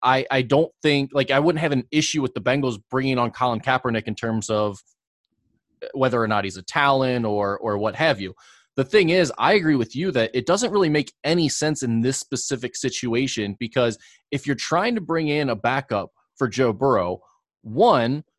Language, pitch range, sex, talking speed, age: English, 115-145 Hz, male, 200 wpm, 20-39